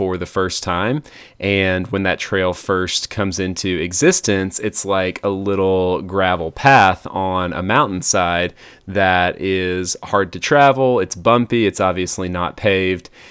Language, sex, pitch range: English, male, 90-100 Hz